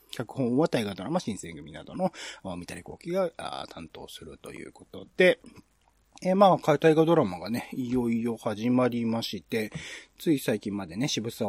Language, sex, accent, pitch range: Japanese, male, native, 100-160 Hz